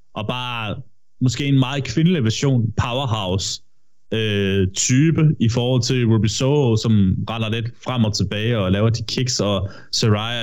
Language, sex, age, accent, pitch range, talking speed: Danish, male, 20-39, native, 105-130 Hz, 155 wpm